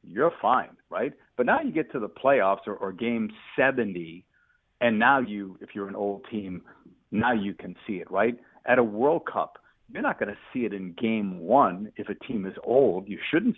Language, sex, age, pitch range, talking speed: English, male, 50-69, 105-135 Hz, 210 wpm